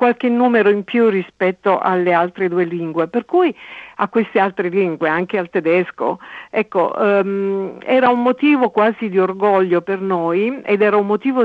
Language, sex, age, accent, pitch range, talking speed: Italian, female, 50-69, native, 180-240 Hz, 170 wpm